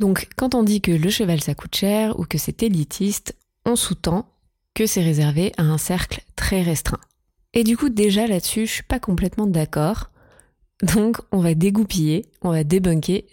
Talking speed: 185 wpm